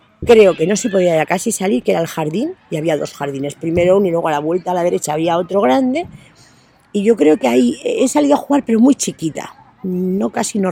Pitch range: 145-185 Hz